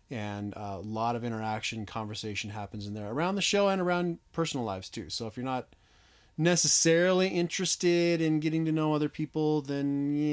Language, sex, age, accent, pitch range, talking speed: English, male, 30-49, American, 110-160 Hz, 180 wpm